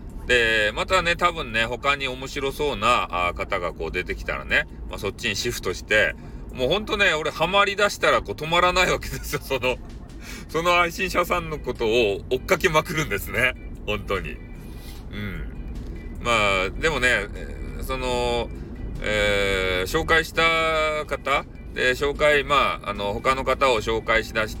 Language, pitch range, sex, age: Japanese, 95-150 Hz, male, 40-59